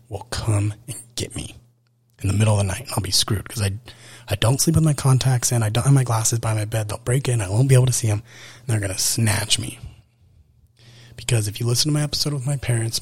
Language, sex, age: English, male, 30-49